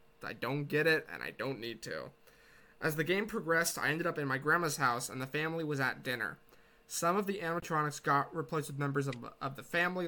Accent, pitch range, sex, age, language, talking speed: American, 135-165 Hz, male, 20-39, English, 220 wpm